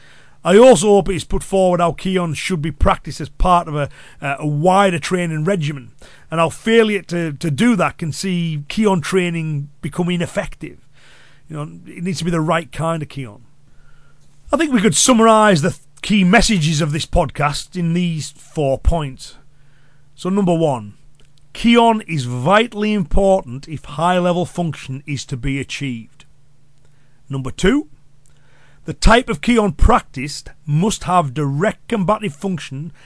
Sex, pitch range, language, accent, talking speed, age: male, 145-185 Hz, English, British, 160 wpm, 40-59